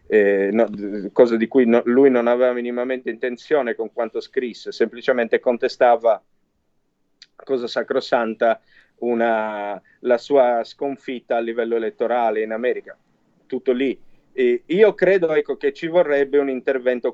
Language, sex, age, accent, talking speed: Italian, male, 40-59, native, 135 wpm